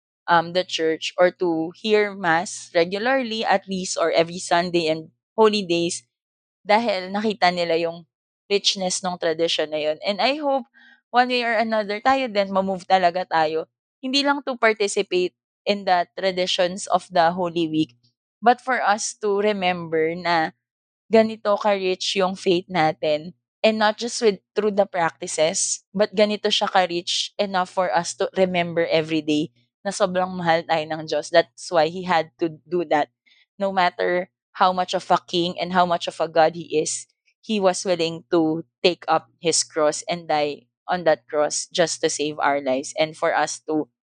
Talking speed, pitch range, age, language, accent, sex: 170 wpm, 160-195 Hz, 20-39, English, Filipino, female